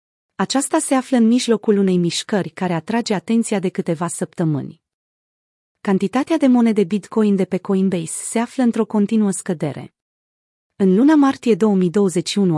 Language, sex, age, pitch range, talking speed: Romanian, female, 30-49, 175-225 Hz, 140 wpm